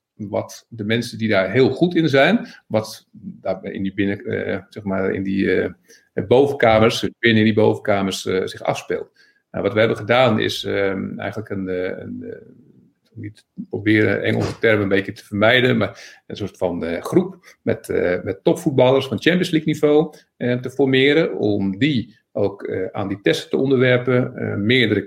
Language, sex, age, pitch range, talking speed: Dutch, male, 50-69, 100-135 Hz, 155 wpm